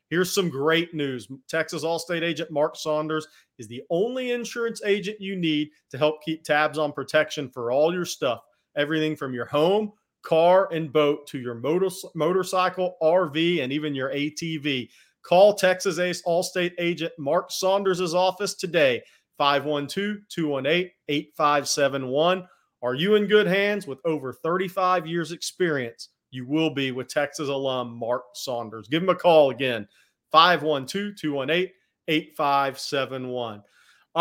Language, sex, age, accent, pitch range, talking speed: English, male, 40-59, American, 140-180 Hz, 135 wpm